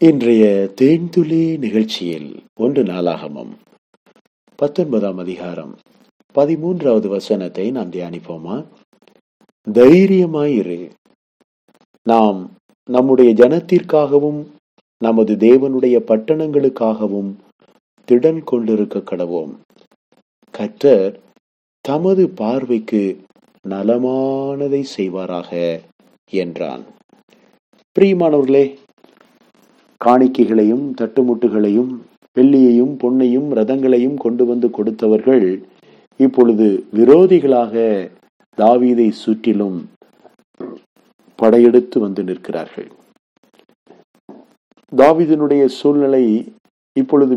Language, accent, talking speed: English, Indian, 45 wpm